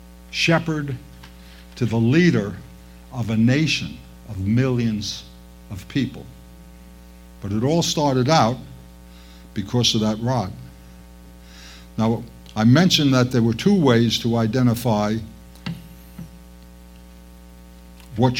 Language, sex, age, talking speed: English, male, 60-79, 100 wpm